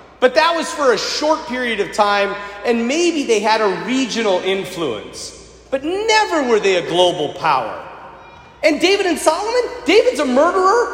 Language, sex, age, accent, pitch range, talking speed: English, male, 40-59, American, 240-390 Hz, 165 wpm